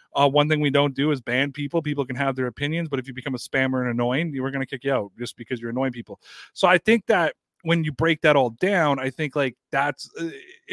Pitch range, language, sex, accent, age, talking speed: 130-160 Hz, English, male, American, 30-49, 270 wpm